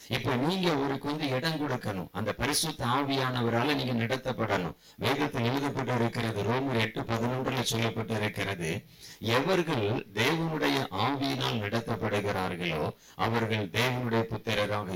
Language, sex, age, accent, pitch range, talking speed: Tamil, male, 50-69, native, 110-130 Hz, 90 wpm